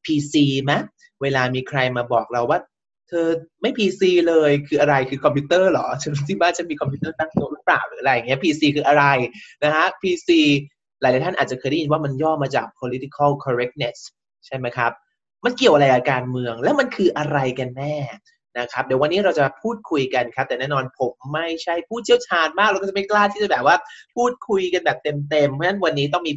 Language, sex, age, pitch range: Thai, male, 20-39, 135-180 Hz